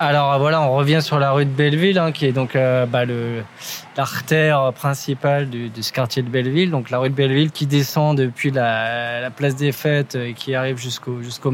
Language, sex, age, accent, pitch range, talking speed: French, male, 20-39, French, 130-160 Hz, 205 wpm